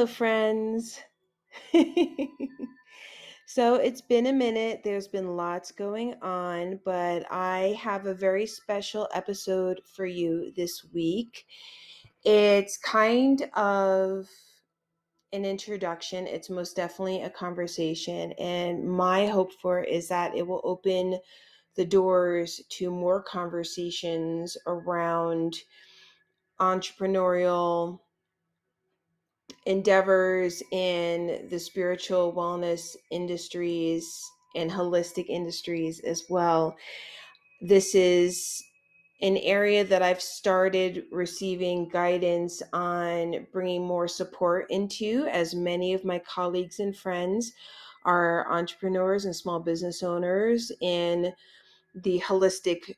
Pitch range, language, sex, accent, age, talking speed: 175-200 Hz, English, female, American, 30-49, 100 wpm